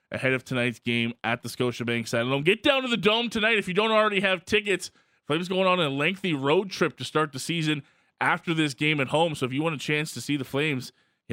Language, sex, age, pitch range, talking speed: English, male, 20-39, 125-155 Hz, 245 wpm